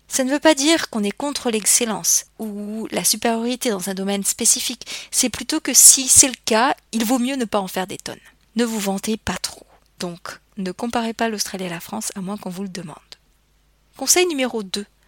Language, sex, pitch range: French, female, 195-255 Hz